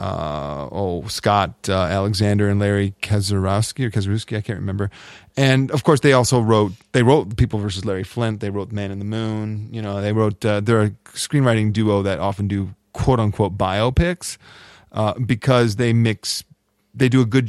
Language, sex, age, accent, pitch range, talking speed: English, male, 40-59, American, 100-125 Hz, 180 wpm